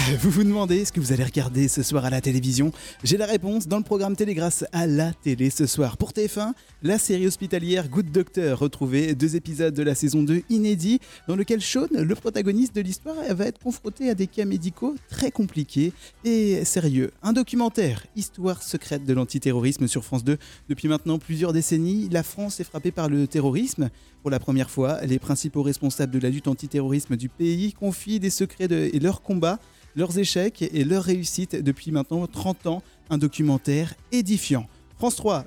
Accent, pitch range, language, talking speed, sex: French, 145-195 Hz, French, 190 wpm, male